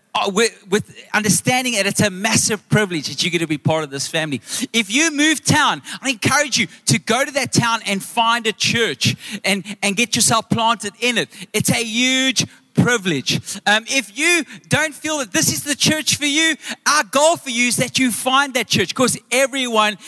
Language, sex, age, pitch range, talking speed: English, male, 30-49, 185-240 Hz, 205 wpm